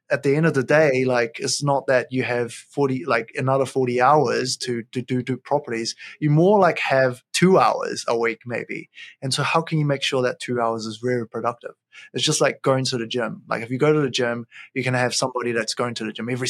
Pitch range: 125-150 Hz